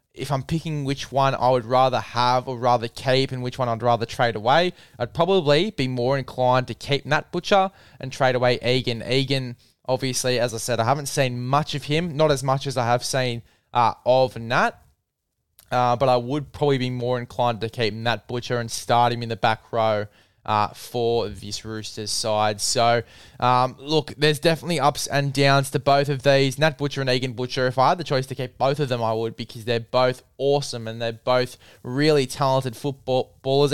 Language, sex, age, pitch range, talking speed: English, male, 20-39, 120-140 Hz, 205 wpm